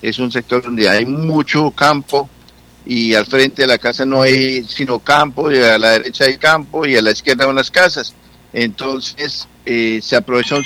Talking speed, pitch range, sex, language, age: 190 wpm, 110-130 Hz, male, Spanish, 60-79